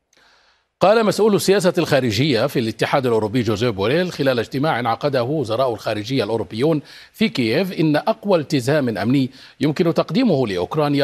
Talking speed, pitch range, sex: 130 wpm, 115-155 Hz, male